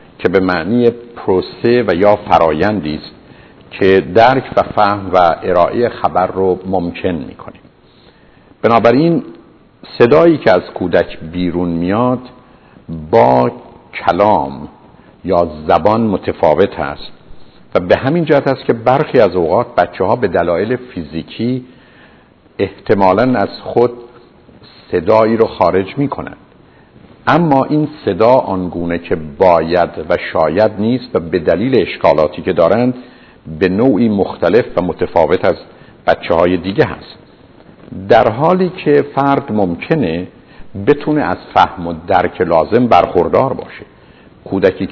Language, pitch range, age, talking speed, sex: Persian, 85-125 Hz, 50-69, 120 wpm, male